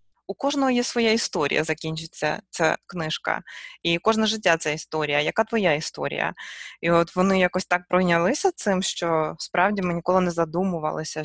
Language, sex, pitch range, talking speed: Ukrainian, female, 160-225 Hz, 155 wpm